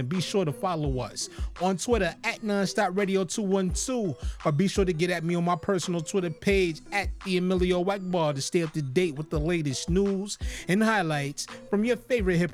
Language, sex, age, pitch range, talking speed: English, male, 20-39, 160-195 Hz, 215 wpm